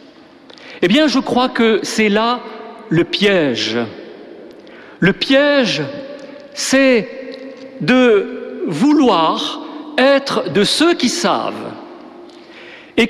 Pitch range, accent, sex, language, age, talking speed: 205-295 Hz, French, male, French, 50-69, 90 wpm